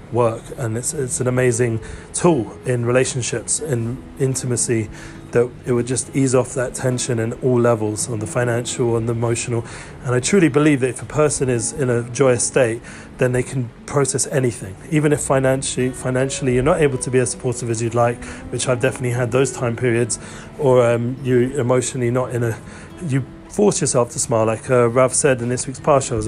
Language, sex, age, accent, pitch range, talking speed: English, male, 30-49, British, 115-130 Hz, 205 wpm